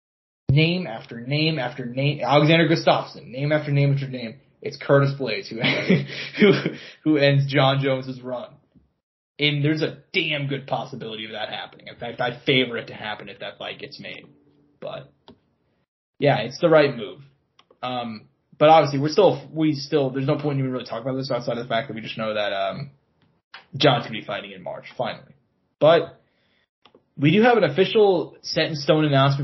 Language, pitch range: English, 130-165 Hz